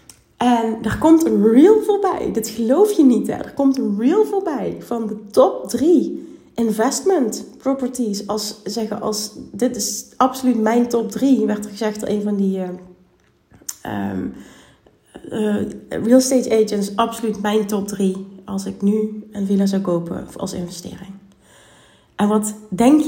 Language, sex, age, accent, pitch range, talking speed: Dutch, female, 30-49, Dutch, 190-240 Hz, 155 wpm